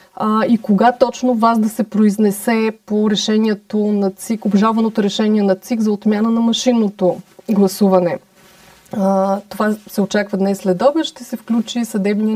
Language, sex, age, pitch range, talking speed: Bulgarian, female, 30-49, 195-225 Hz, 145 wpm